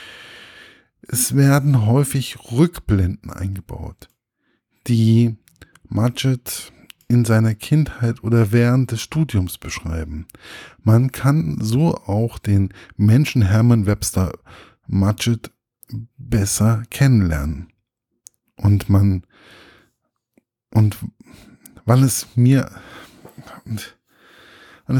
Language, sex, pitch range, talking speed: German, male, 105-125 Hz, 80 wpm